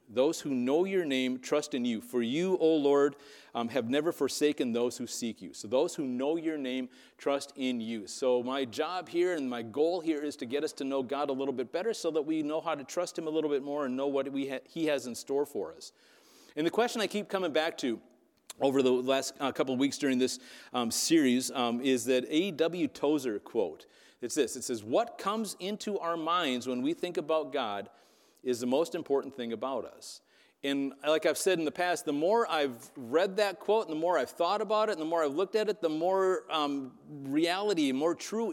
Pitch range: 140-200 Hz